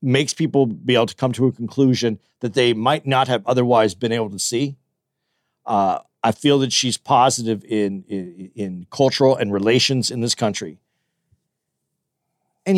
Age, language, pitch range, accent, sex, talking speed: 50-69, English, 120-160 Hz, American, male, 165 wpm